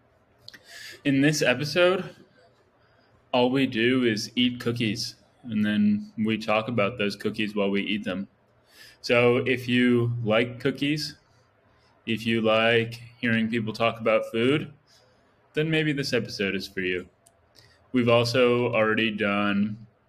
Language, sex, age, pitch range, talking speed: English, male, 20-39, 100-125 Hz, 130 wpm